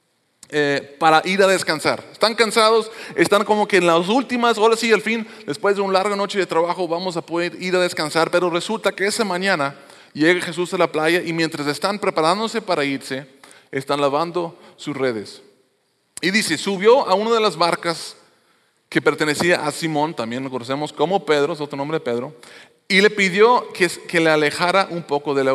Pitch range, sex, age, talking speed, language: 145-195 Hz, male, 30-49, 195 wpm, English